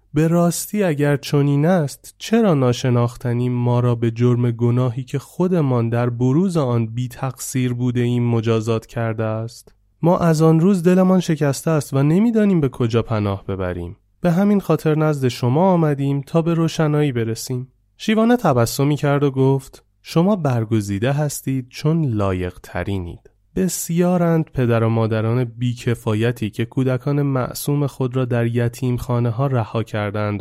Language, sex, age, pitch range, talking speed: Persian, male, 30-49, 105-140 Hz, 145 wpm